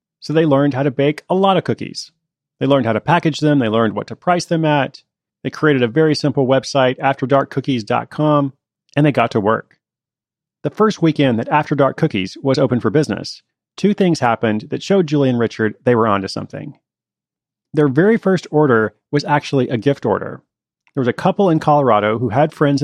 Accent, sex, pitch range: American, male, 115-155 Hz